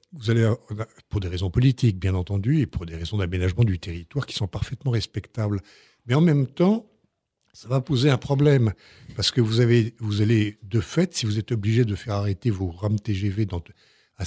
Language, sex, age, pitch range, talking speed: French, male, 60-79, 100-125 Hz, 200 wpm